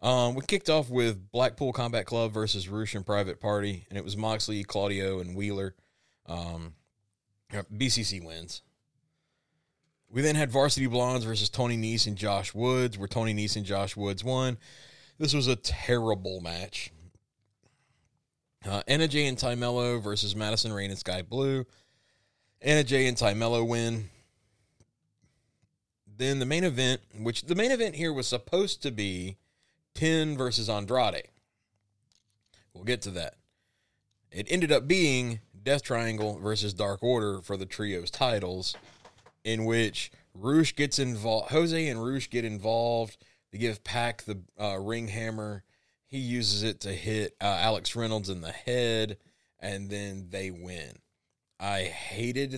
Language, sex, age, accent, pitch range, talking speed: English, male, 30-49, American, 100-125 Hz, 150 wpm